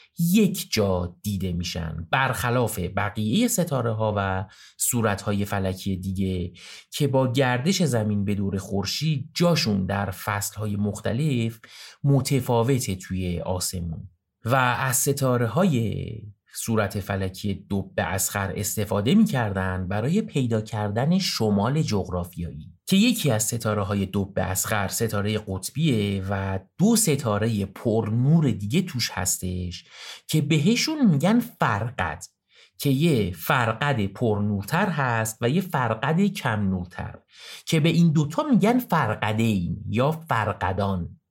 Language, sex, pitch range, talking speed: Persian, male, 95-140 Hz, 120 wpm